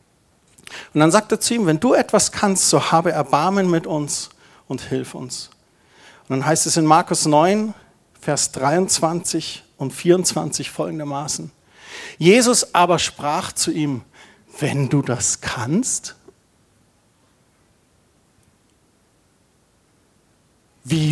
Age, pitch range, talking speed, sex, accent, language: 50-69, 150-210 Hz, 115 wpm, male, German, German